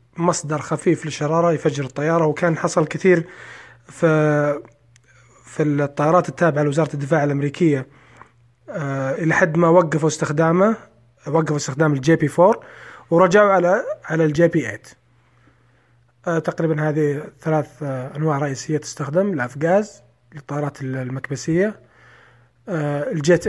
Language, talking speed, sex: Persian, 105 wpm, male